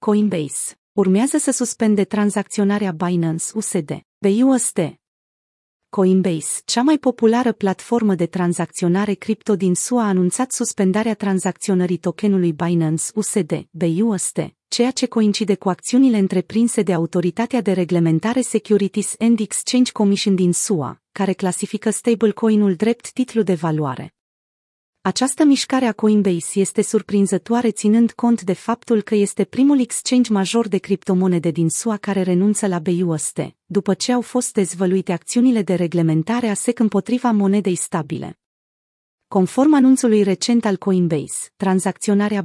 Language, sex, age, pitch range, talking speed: Romanian, female, 30-49, 180-225 Hz, 130 wpm